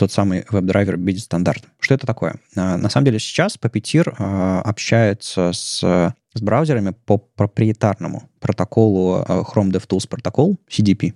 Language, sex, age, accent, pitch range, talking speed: Russian, male, 20-39, native, 95-125 Hz, 125 wpm